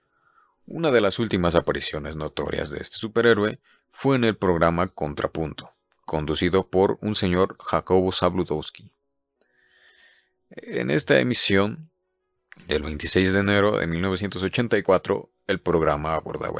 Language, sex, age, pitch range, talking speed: Spanish, male, 40-59, 85-115 Hz, 115 wpm